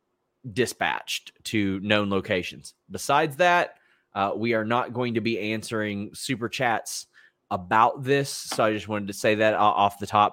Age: 30-49